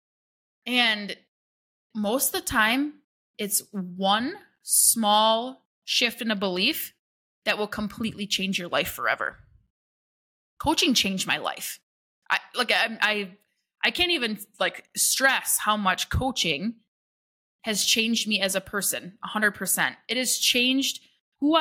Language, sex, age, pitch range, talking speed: English, female, 20-39, 205-265 Hz, 135 wpm